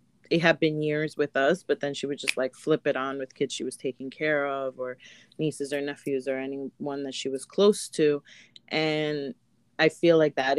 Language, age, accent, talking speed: English, 30-49, American, 215 wpm